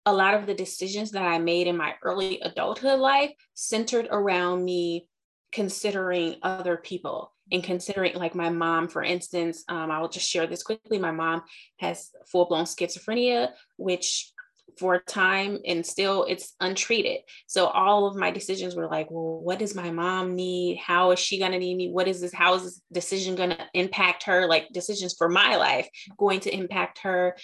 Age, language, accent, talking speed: 20-39, English, American, 185 wpm